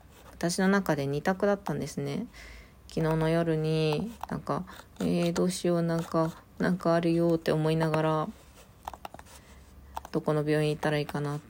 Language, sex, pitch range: Japanese, female, 145-195 Hz